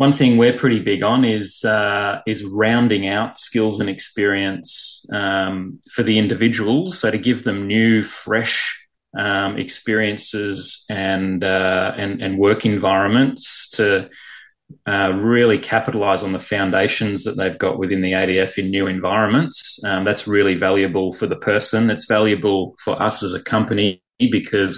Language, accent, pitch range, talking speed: English, Australian, 95-115 Hz, 155 wpm